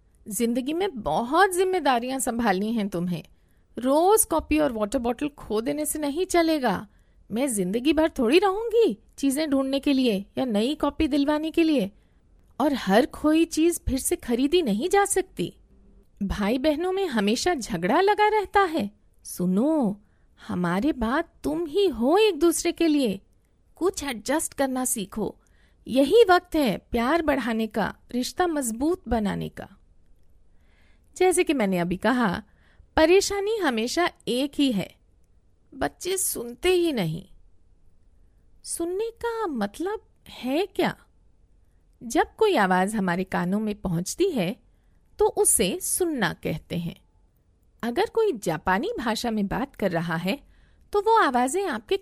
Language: Hindi